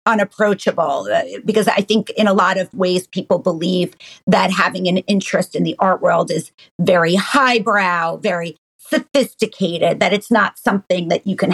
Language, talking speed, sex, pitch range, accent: English, 160 wpm, female, 185-225 Hz, American